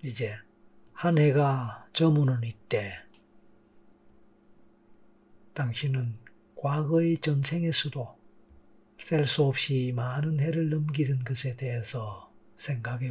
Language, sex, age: Korean, male, 40-59